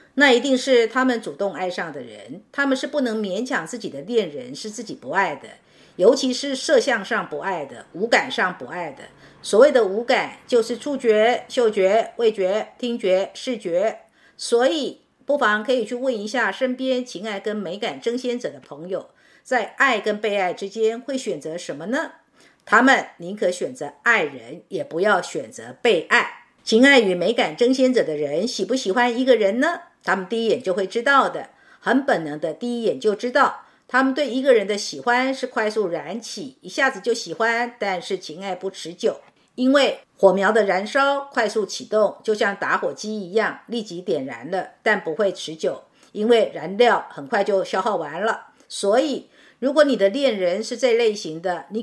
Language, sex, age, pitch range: Chinese, female, 50-69, 210-265 Hz